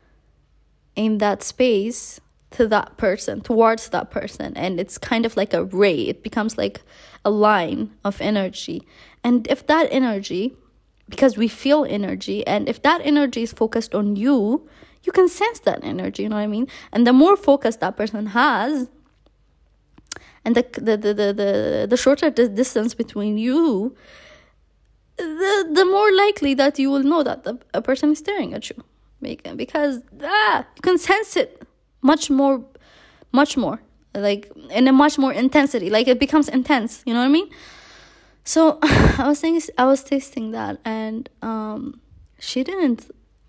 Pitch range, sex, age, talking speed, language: 220-290 Hz, female, 20-39, 165 wpm, English